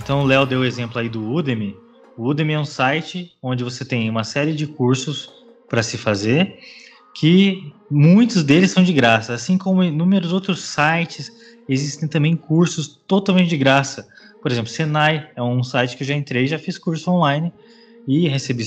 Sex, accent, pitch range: male, Brazilian, 125-165 Hz